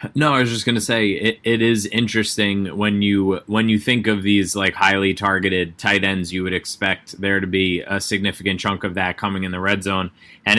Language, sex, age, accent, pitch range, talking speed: English, male, 20-39, American, 90-100 Hz, 225 wpm